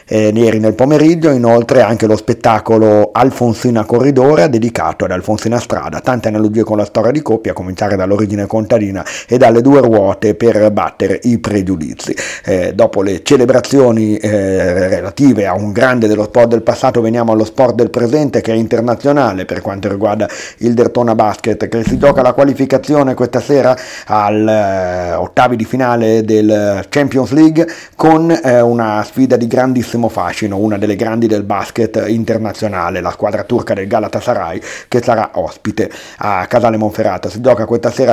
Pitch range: 105-125 Hz